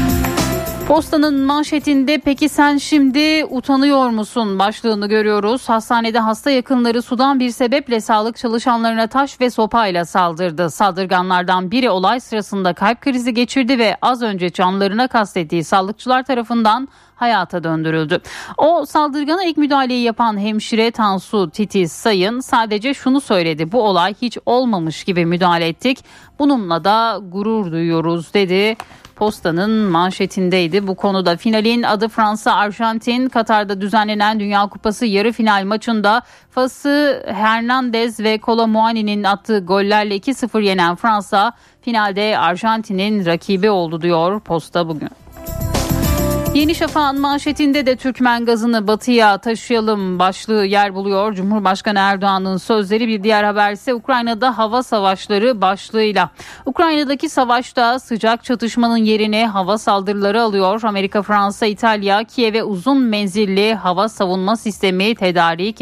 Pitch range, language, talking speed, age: 195-245 Hz, Turkish, 120 wpm, 10-29